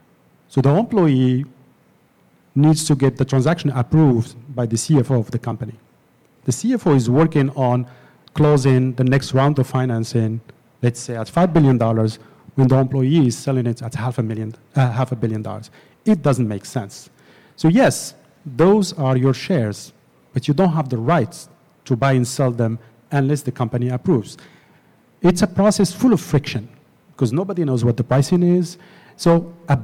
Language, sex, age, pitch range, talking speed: English, male, 50-69, 125-170 Hz, 165 wpm